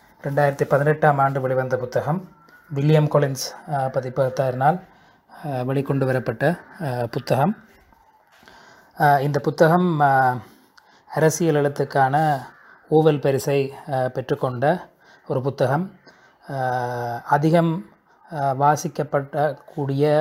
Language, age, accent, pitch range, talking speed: Tamil, 20-39, native, 130-150 Hz, 70 wpm